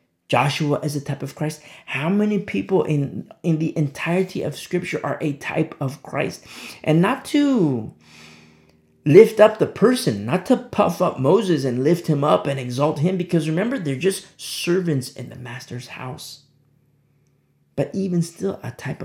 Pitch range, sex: 125-160 Hz, male